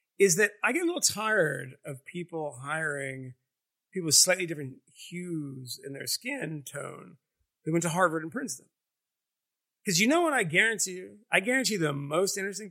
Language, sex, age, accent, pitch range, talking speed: English, male, 30-49, American, 140-205 Hz, 180 wpm